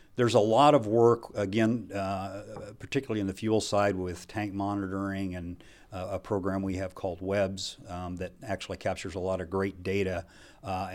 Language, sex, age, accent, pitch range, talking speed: English, male, 50-69, American, 95-105 Hz, 180 wpm